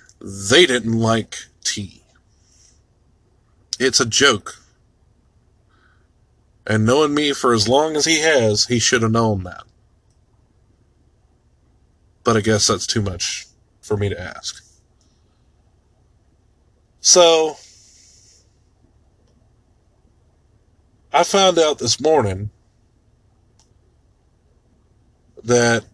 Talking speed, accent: 90 wpm, American